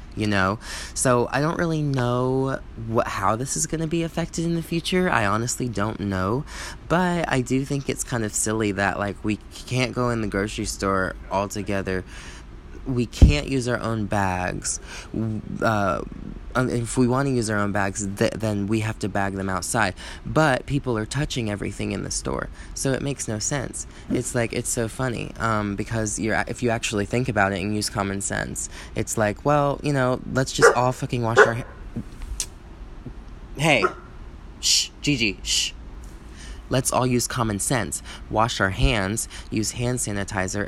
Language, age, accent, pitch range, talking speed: English, 20-39, American, 100-125 Hz, 180 wpm